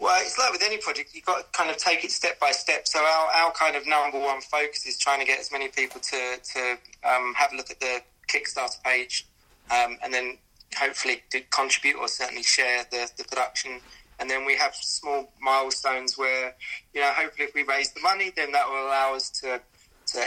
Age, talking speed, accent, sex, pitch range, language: 20-39, 220 wpm, British, male, 125-140 Hz, English